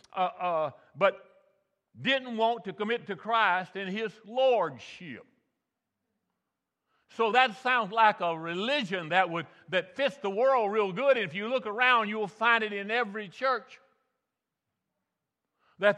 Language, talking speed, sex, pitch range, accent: English, 145 wpm, male, 200-255 Hz, American